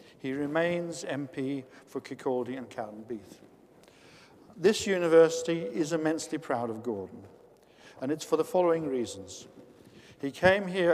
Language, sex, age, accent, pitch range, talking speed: English, male, 50-69, British, 140-170 Hz, 130 wpm